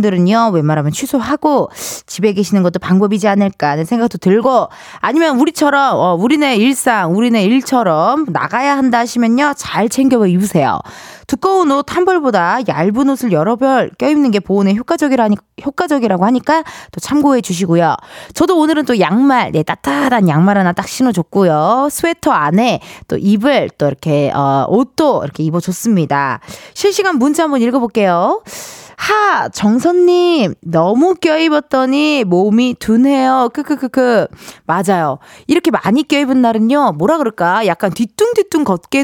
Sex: female